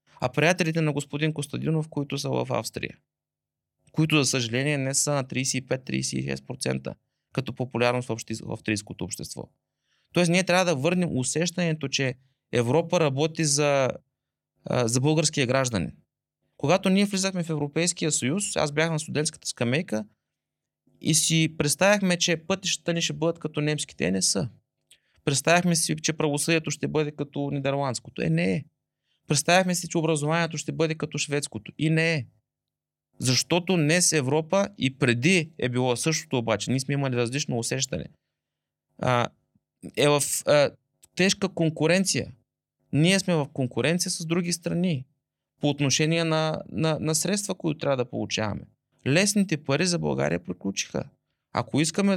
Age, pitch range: 20-39, 130-165 Hz